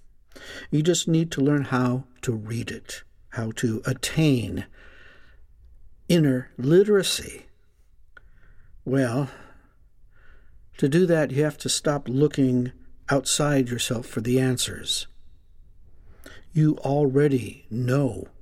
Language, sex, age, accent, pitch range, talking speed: English, male, 60-79, American, 120-160 Hz, 100 wpm